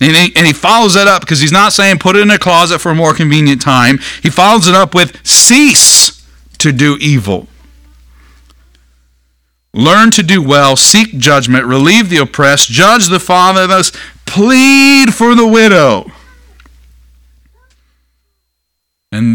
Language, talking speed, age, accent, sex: English, 145 wpm, 40-59, American, male